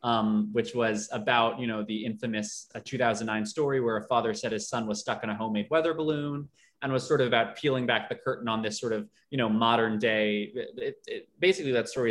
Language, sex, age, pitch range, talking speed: English, male, 20-39, 110-130 Hz, 235 wpm